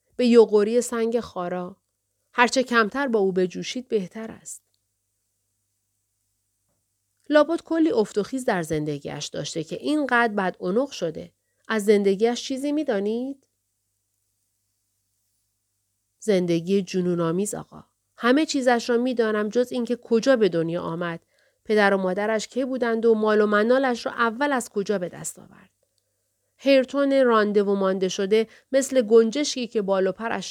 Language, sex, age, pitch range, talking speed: Persian, female, 40-59, 150-245 Hz, 130 wpm